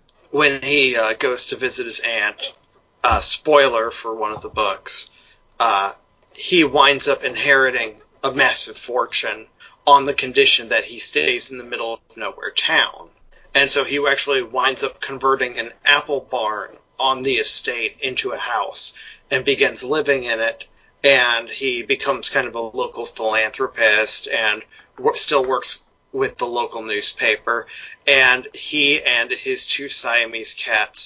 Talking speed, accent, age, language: 150 wpm, American, 40-59, English